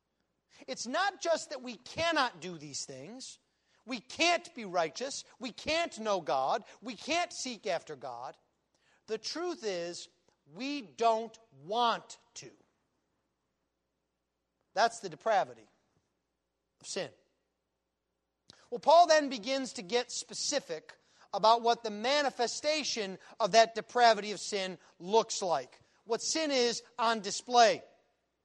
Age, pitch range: 40-59, 200-285 Hz